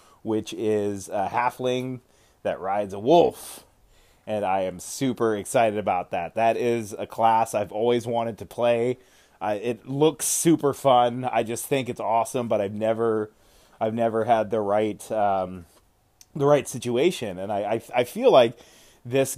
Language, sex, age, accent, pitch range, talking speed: English, male, 20-39, American, 105-125 Hz, 165 wpm